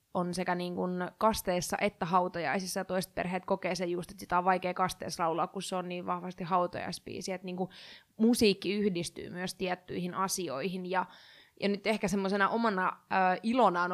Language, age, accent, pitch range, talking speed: Finnish, 20-39, native, 180-200 Hz, 160 wpm